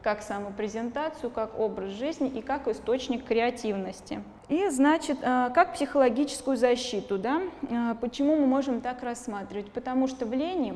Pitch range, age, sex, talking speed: 215-270 Hz, 20-39, female, 130 wpm